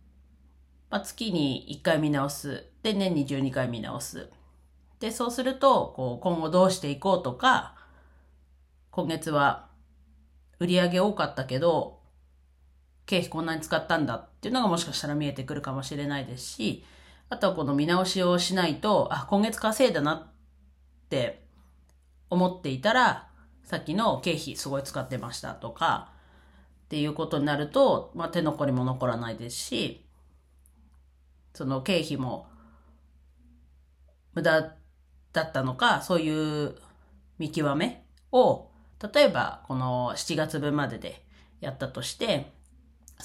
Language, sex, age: Japanese, female, 40-59